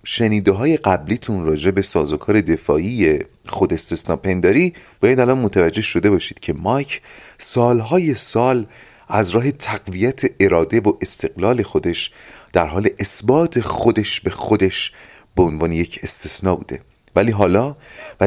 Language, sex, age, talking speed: Persian, male, 30-49, 130 wpm